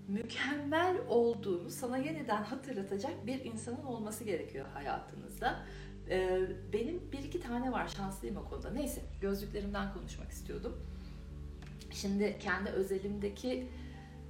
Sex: female